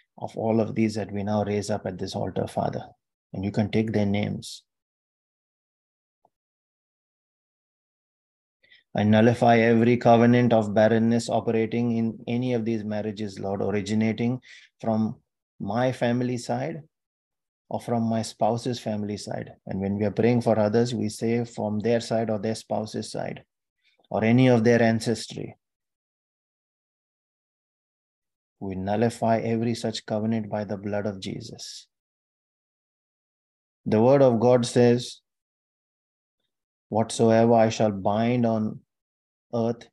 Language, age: English, 30-49